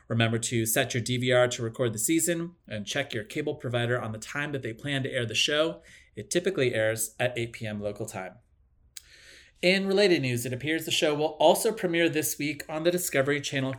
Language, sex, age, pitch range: English, male, 30-49, 120-150 Hz